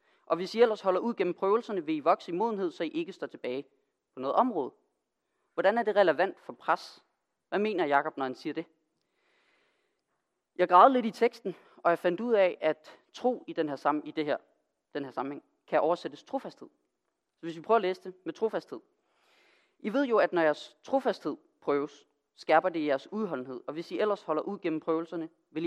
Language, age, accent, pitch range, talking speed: Danish, 30-49, native, 155-215 Hz, 210 wpm